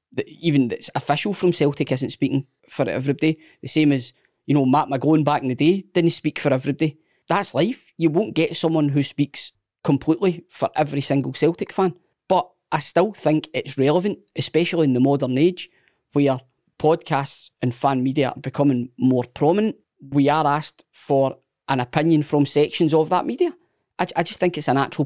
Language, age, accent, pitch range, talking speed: English, 20-39, British, 125-150 Hz, 180 wpm